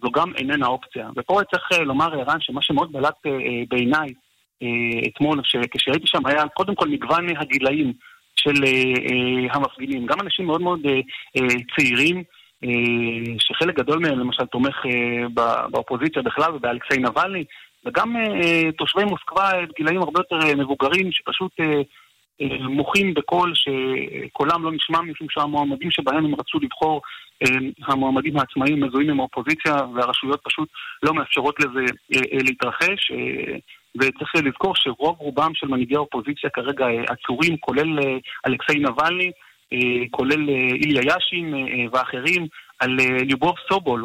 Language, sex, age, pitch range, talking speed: Hebrew, male, 30-49, 130-165 Hz, 115 wpm